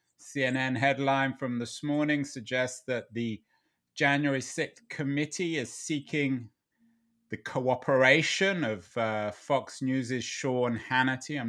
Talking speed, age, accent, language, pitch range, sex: 115 wpm, 30-49, British, English, 115-140 Hz, male